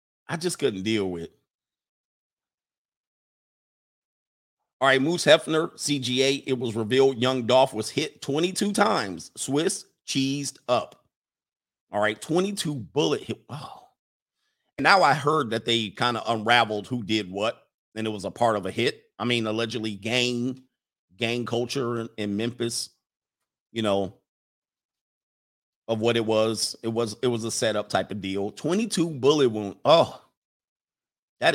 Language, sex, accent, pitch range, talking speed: English, male, American, 110-150 Hz, 145 wpm